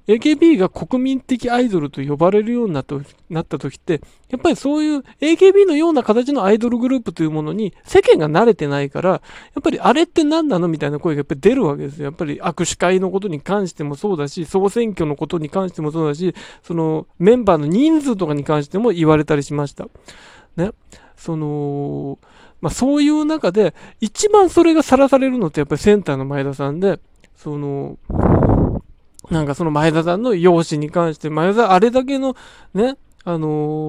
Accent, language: native, Japanese